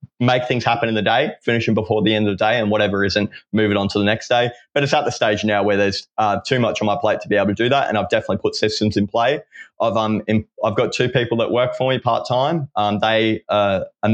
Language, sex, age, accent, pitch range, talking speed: English, male, 20-39, Australian, 105-125 Hz, 290 wpm